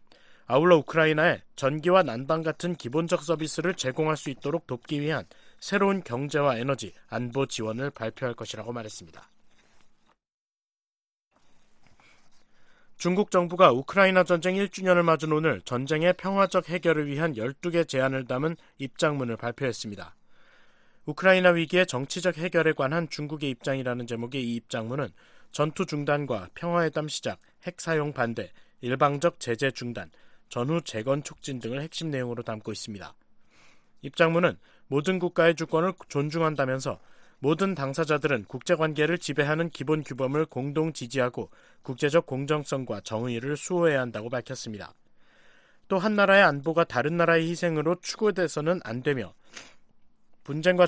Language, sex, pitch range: Korean, male, 125-170 Hz